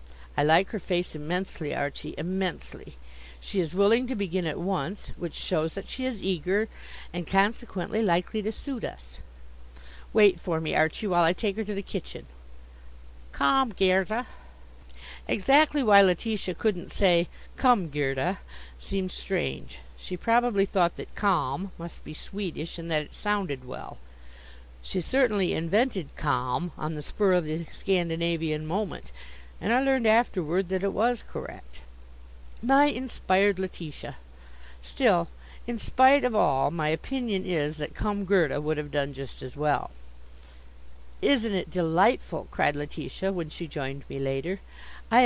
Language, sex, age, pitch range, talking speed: English, female, 50-69, 130-200 Hz, 145 wpm